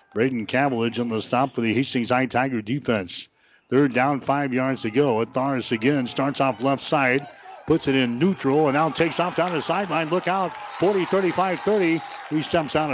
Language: English